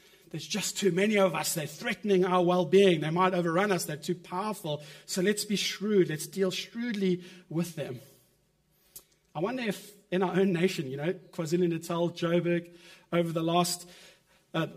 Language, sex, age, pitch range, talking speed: English, male, 30-49, 170-190 Hz, 170 wpm